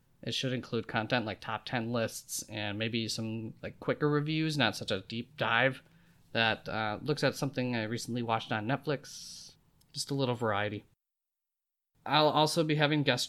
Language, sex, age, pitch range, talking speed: English, male, 20-39, 115-145 Hz, 170 wpm